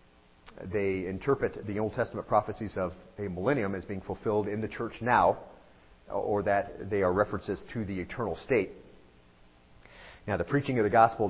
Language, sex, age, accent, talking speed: English, male, 40-59, American, 165 wpm